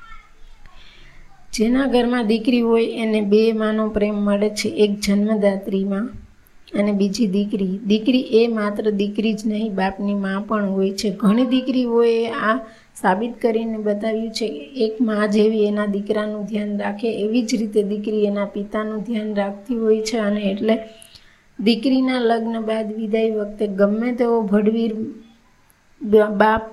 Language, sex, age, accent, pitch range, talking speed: Gujarati, female, 20-39, native, 205-230 Hz, 105 wpm